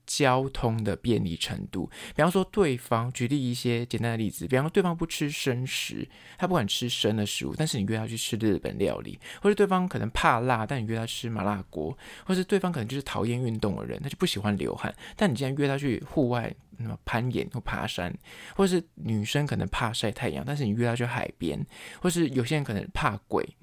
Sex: male